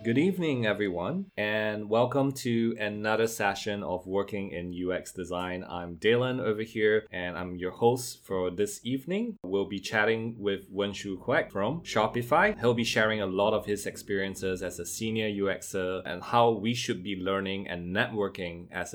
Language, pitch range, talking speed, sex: English, 95-120 Hz, 170 wpm, male